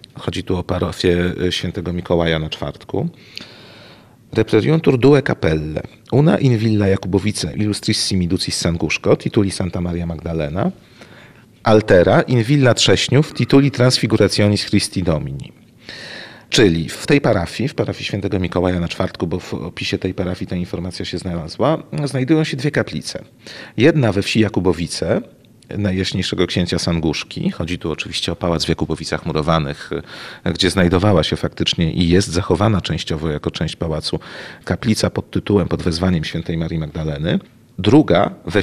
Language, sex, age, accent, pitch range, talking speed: Polish, male, 40-59, native, 85-120 Hz, 140 wpm